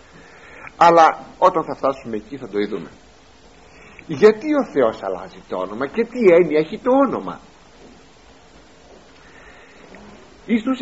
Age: 60-79